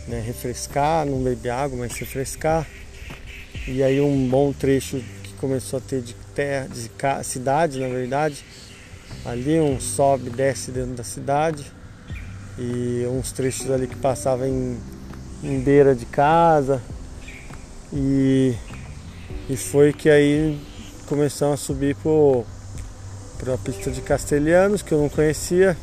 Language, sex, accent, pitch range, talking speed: Portuguese, male, Brazilian, 105-150 Hz, 130 wpm